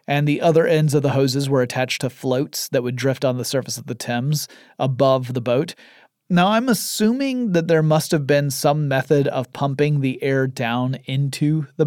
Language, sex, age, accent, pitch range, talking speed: English, male, 30-49, American, 130-155 Hz, 200 wpm